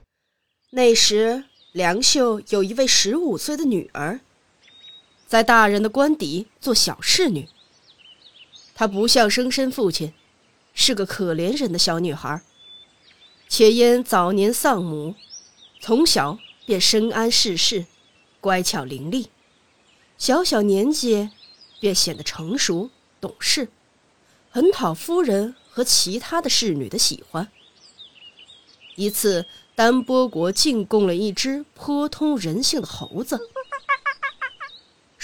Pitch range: 190-275 Hz